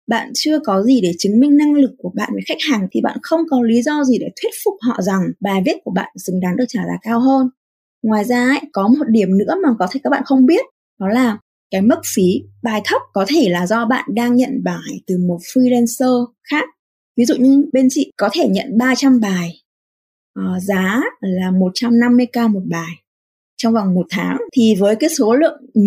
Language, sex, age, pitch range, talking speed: Vietnamese, female, 20-39, 200-265 Hz, 220 wpm